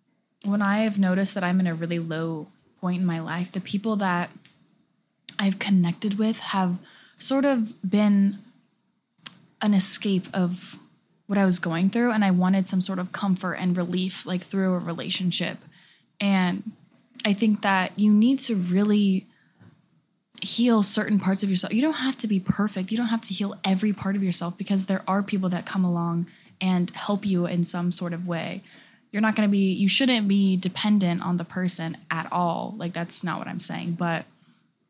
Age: 10-29